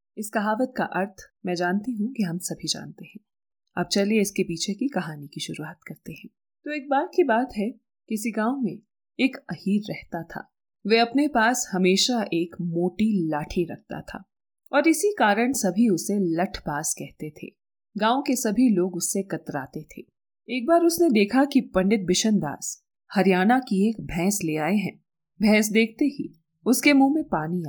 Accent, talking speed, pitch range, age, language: native, 175 wpm, 180-235 Hz, 30-49, Hindi